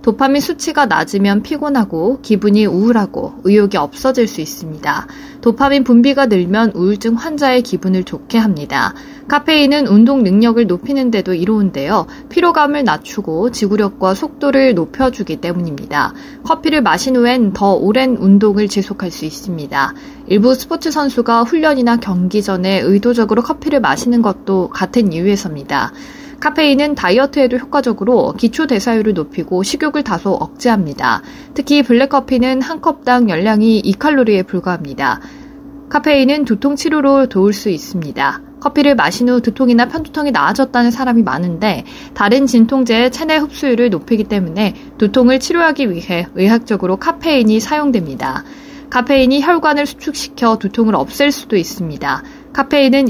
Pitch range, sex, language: 200-280 Hz, female, Korean